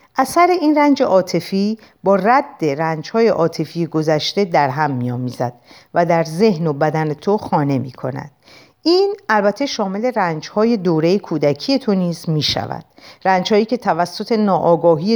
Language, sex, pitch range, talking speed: Persian, female, 165-225 Hz, 145 wpm